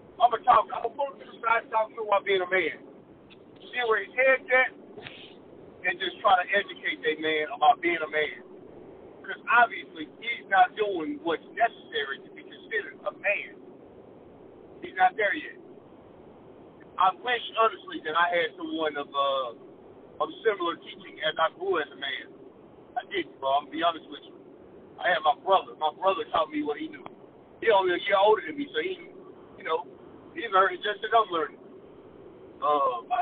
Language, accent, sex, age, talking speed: English, American, male, 50-69, 175 wpm